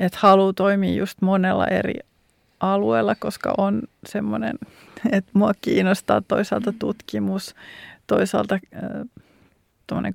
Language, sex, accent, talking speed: Finnish, female, native, 100 wpm